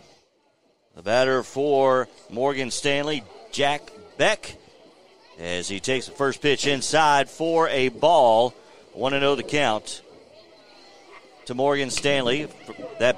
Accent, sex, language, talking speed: American, male, English, 125 wpm